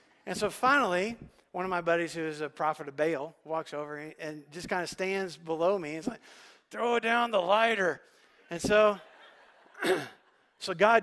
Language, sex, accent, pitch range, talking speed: English, male, American, 160-195 Hz, 175 wpm